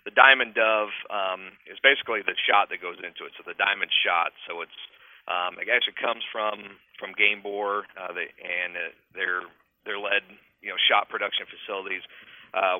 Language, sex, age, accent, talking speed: English, male, 40-59, American, 185 wpm